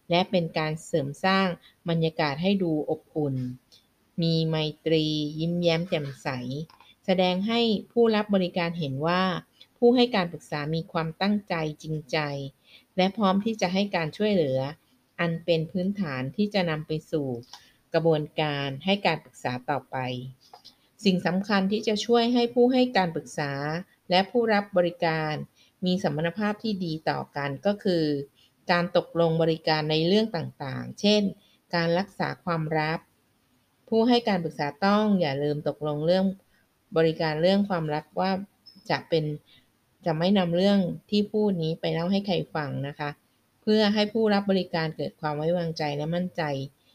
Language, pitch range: Thai, 150-195 Hz